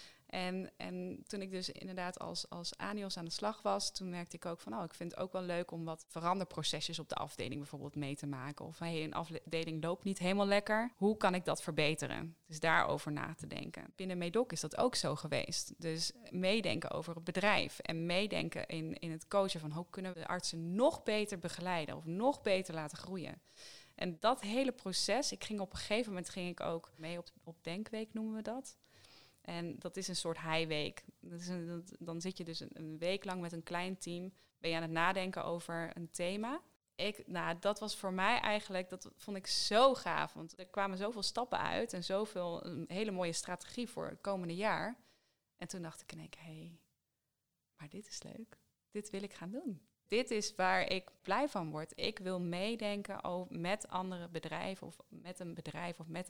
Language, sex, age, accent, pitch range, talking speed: Dutch, female, 20-39, Dutch, 165-200 Hz, 210 wpm